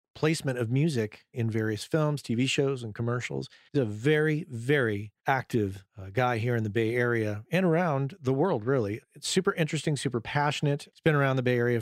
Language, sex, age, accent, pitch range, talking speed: English, male, 40-59, American, 115-145 Hz, 195 wpm